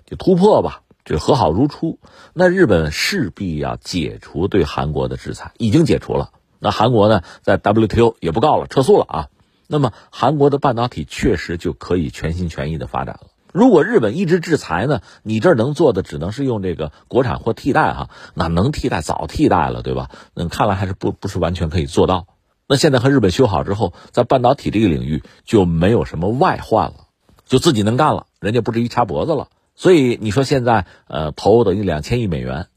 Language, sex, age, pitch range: Chinese, male, 50-69, 85-140 Hz